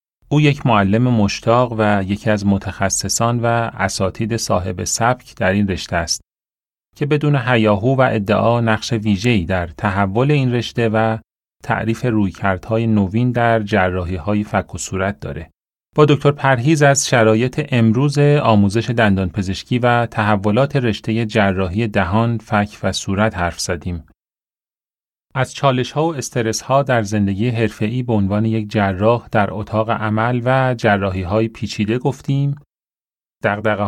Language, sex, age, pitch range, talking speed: Persian, male, 30-49, 100-125 Hz, 135 wpm